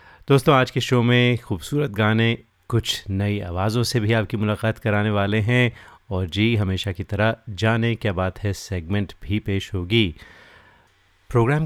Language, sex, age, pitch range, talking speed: Hindi, male, 30-49, 100-115 Hz, 160 wpm